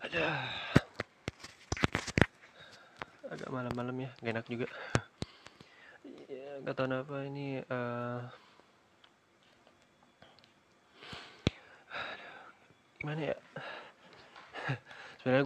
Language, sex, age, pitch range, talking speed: Indonesian, male, 20-39, 115-125 Hz, 60 wpm